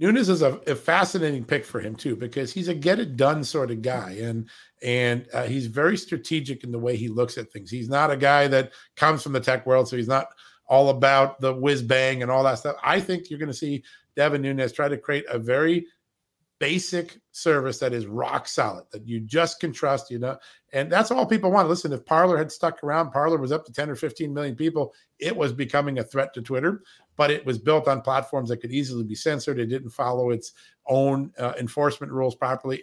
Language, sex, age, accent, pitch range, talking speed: English, male, 50-69, American, 125-155 Hz, 225 wpm